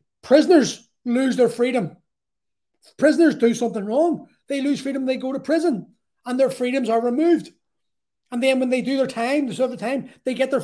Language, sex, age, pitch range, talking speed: English, male, 30-49, 230-280 Hz, 190 wpm